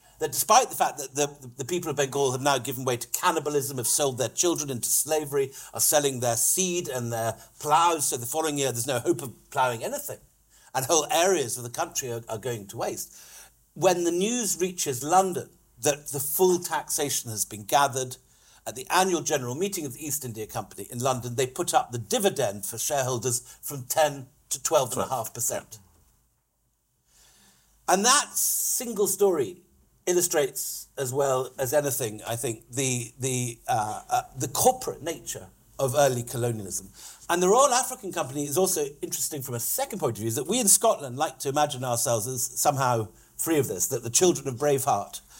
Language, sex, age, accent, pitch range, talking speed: English, male, 60-79, British, 120-165 Hz, 180 wpm